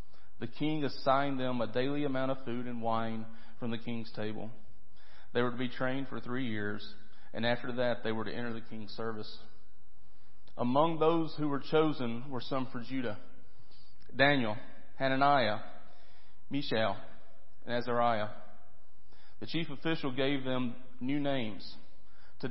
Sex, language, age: male, English, 40-59